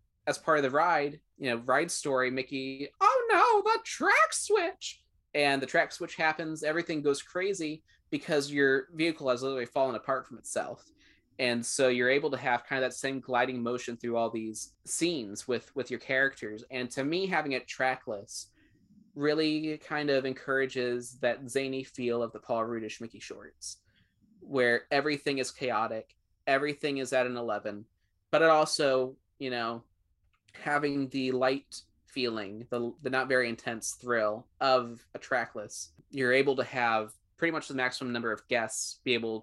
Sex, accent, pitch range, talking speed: male, American, 115-140 Hz, 170 wpm